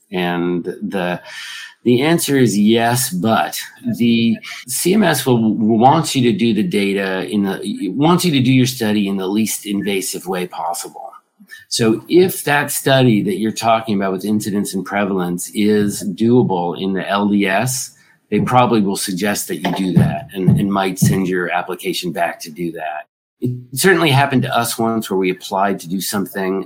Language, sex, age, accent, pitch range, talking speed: English, male, 50-69, American, 95-130 Hz, 175 wpm